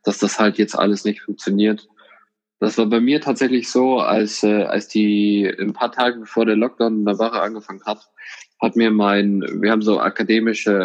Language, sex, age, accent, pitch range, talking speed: German, male, 20-39, German, 100-115 Hz, 195 wpm